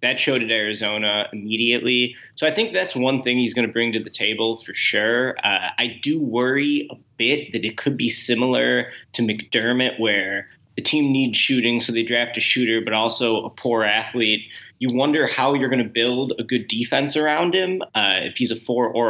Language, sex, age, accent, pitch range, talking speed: English, male, 20-39, American, 110-130 Hz, 205 wpm